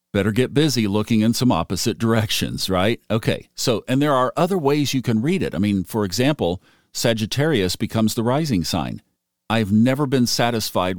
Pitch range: 95-125 Hz